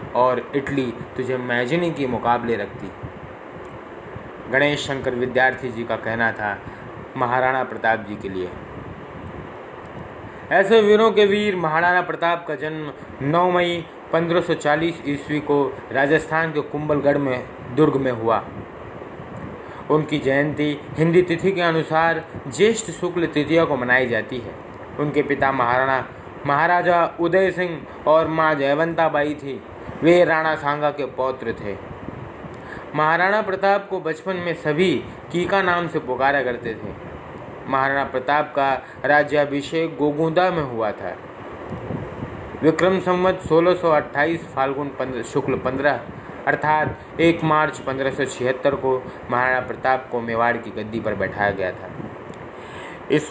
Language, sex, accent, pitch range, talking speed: Hindi, male, native, 125-165 Hz, 130 wpm